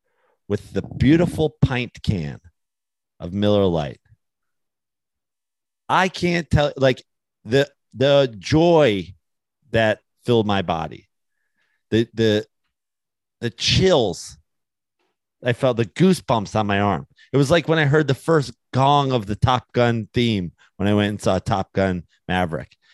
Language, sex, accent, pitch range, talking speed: English, male, American, 100-140 Hz, 140 wpm